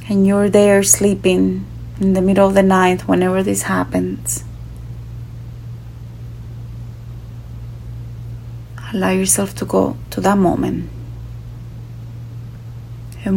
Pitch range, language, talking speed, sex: 115-120 Hz, English, 95 wpm, female